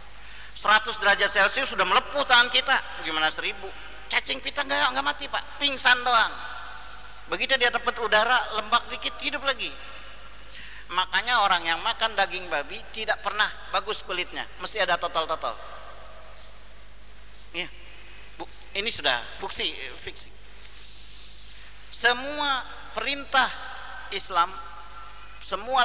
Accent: Indonesian